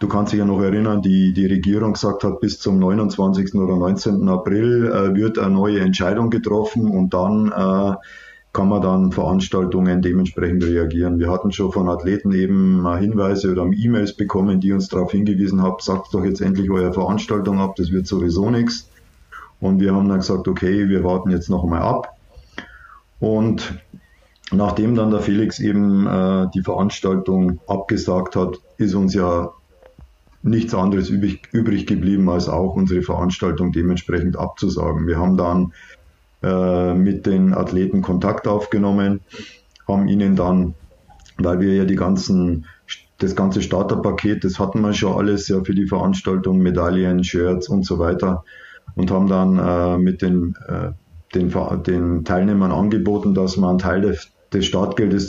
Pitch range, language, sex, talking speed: 90-100 Hz, German, male, 160 wpm